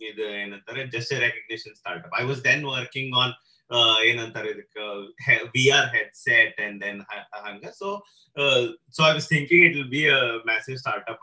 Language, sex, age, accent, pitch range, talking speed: Kannada, male, 30-49, native, 115-150 Hz, 185 wpm